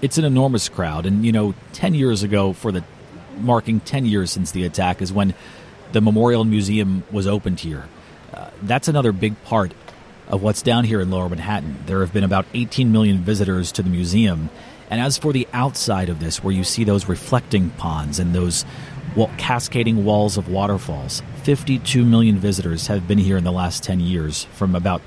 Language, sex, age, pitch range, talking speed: English, male, 40-59, 90-110 Hz, 190 wpm